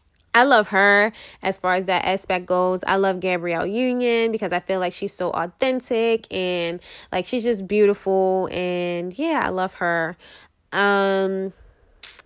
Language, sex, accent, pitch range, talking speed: English, female, American, 180-210 Hz, 150 wpm